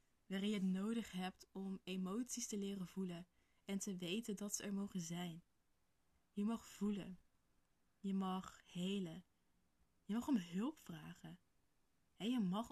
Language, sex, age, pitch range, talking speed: Dutch, female, 20-39, 175-210 Hz, 150 wpm